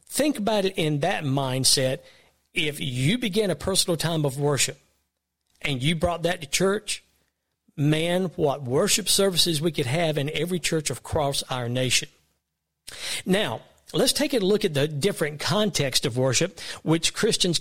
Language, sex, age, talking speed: English, male, 50-69, 155 wpm